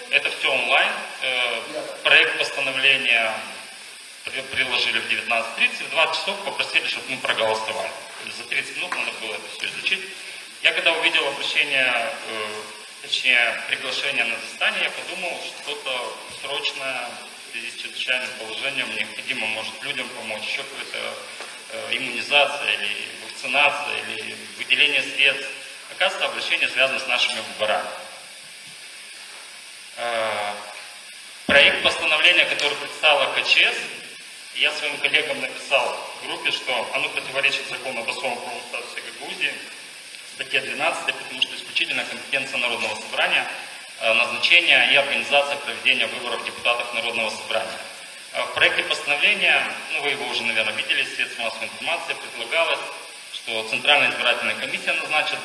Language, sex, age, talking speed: Russian, male, 30-49, 120 wpm